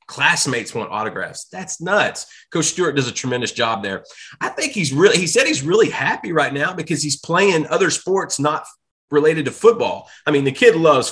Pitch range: 140-180 Hz